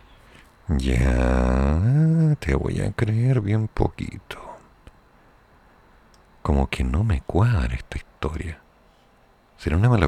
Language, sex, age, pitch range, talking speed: Spanish, male, 50-69, 70-105 Hz, 100 wpm